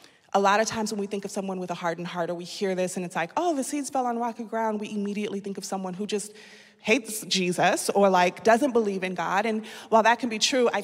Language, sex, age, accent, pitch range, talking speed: English, female, 20-39, American, 185-220 Hz, 270 wpm